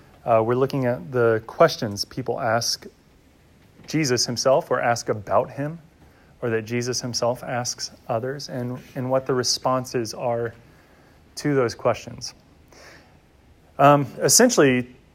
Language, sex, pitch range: English, male, 100-140 Hz